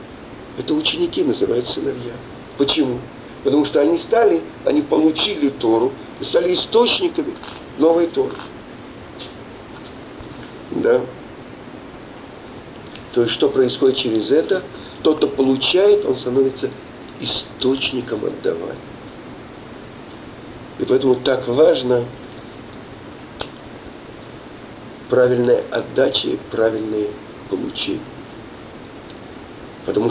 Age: 50-69